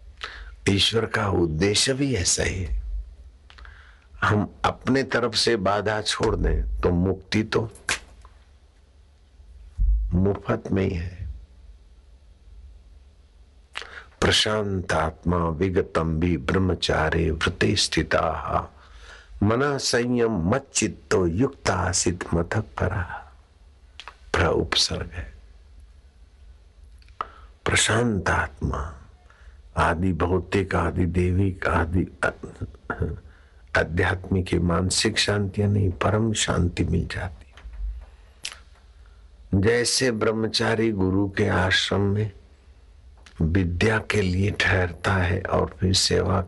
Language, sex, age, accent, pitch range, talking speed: Hindi, male, 60-79, native, 75-100 Hz, 85 wpm